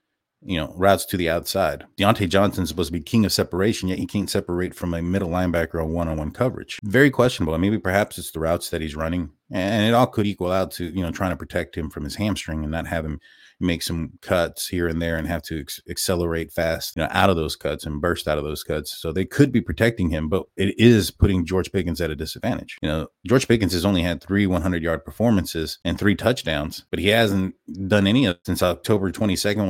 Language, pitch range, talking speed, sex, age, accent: English, 85-100 Hz, 240 wpm, male, 30-49, American